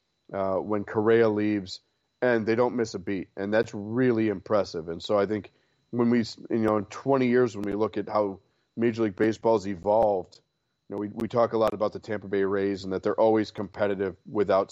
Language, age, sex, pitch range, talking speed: English, 30-49, male, 100-115 Hz, 215 wpm